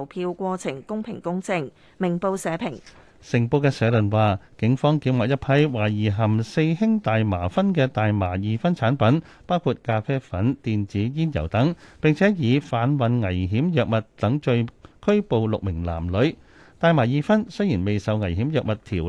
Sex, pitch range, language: male, 105-155 Hz, Chinese